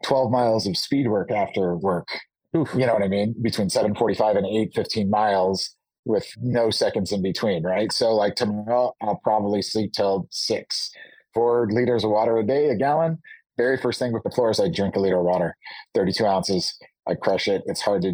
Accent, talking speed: American, 205 wpm